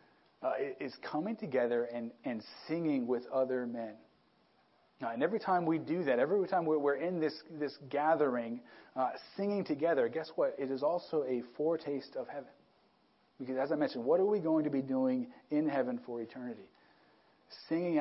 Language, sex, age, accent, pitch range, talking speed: English, male, 40-59, American, 130-165 Hz, 175 wpm